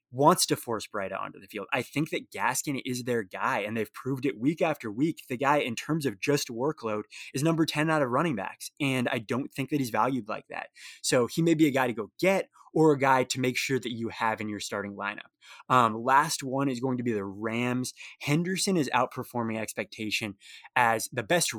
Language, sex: English, male